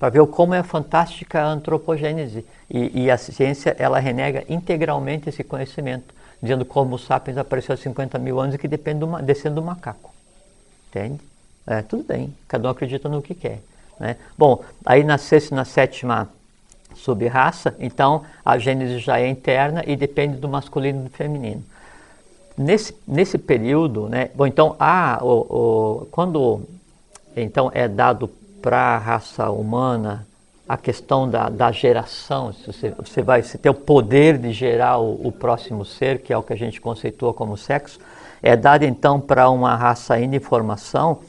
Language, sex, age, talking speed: Portuguese, male, 50-69, 160 wpm